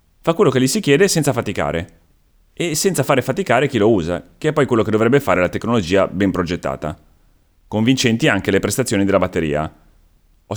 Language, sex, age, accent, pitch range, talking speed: Italian, male, 30-49, native, 85-130 Hz, 185 wpm